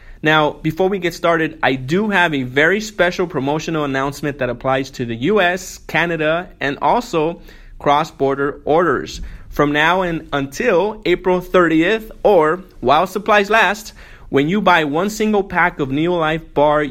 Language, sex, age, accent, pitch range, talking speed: English, male, 30-49, American, 145-185 Hz, 145 wpm